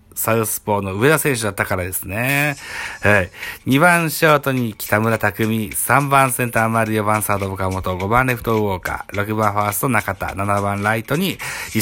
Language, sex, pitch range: Japanese, male, 95-135 Hz